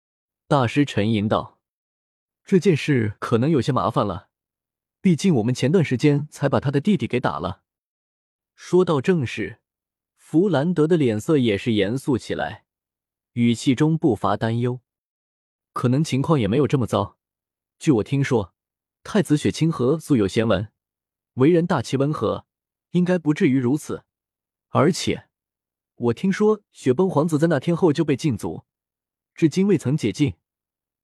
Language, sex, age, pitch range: Chinese, male, 20-39, 110-160 Hz